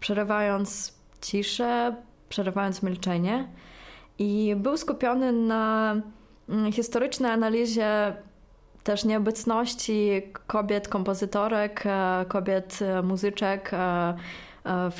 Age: 20-39